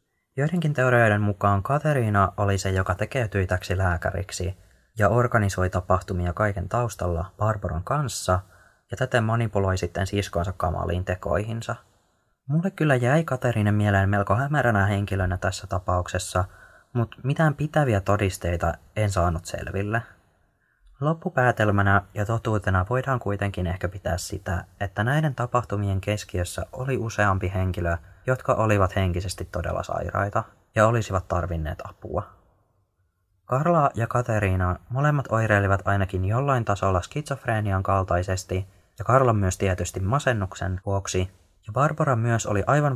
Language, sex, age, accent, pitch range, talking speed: Finnish, male, 20-39, native, 90-115 Hz, 120 wpm